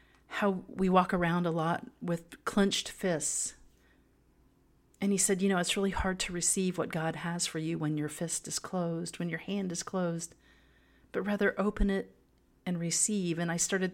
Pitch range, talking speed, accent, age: 150-185 Hz, 185 wpm, American, 40-59